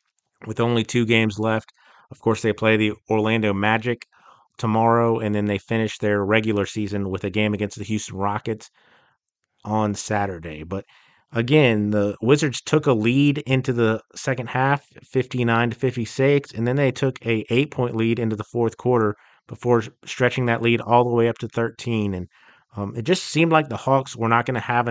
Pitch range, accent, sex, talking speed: 110-120 Hz, American, male, 190 wpm